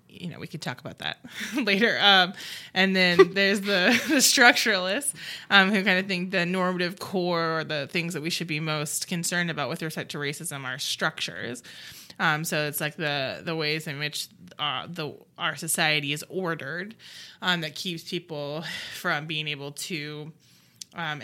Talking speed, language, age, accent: 180 wpm, English, 20-39, American